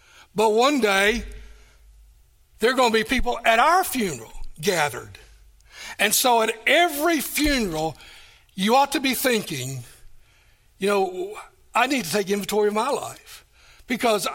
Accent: American